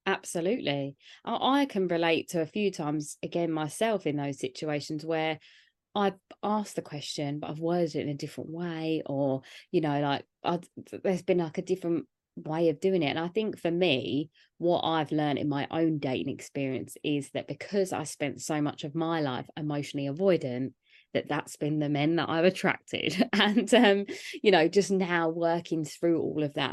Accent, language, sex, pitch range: British, English, female, 145-180 Hz